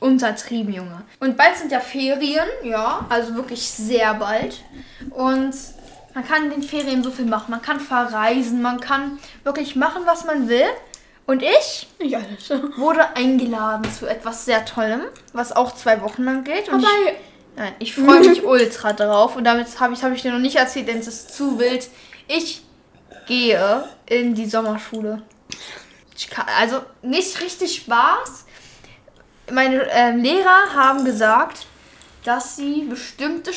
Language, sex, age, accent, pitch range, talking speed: German, female, 10-29, German, 235-290 Hz, 155 wpm